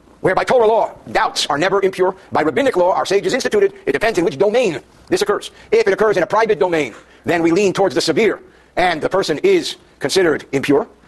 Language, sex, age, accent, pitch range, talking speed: English, male, 50-69, American, 170-250 Hz, 215 wpm